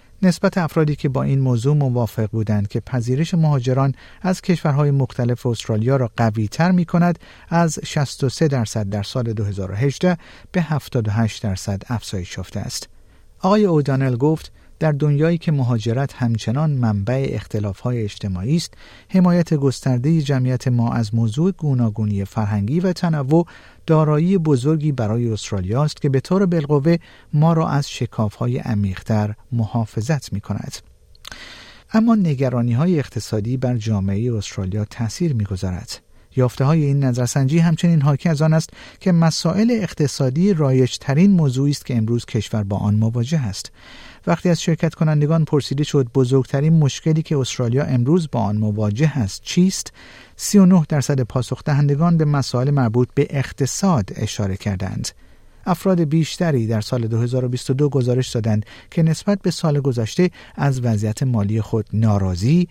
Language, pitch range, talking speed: Persian, 110-160 Hz, 140 wpm